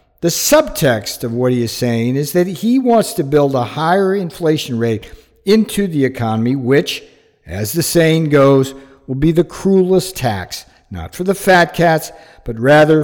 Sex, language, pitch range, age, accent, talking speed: male, English, 120-170 Hz, 60-79, American, 170 wpm